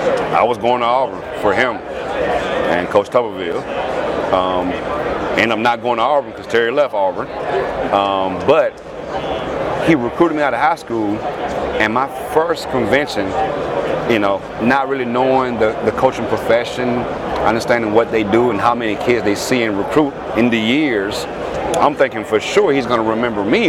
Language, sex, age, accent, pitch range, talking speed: English, male, 30-49, American, 110-135 Hz, 165 wpm